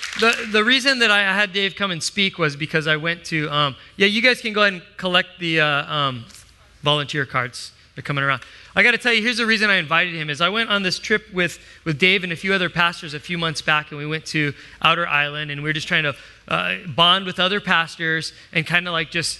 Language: English